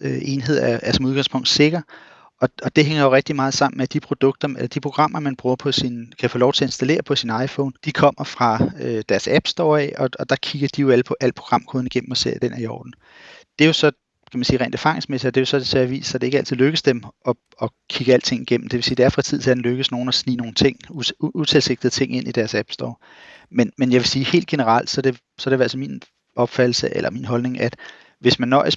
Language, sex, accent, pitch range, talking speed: Danish, male, native, 120-140 Hz, 275 wpm